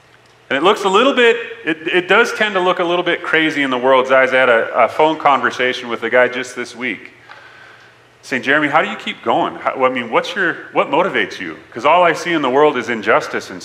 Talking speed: 245 wpm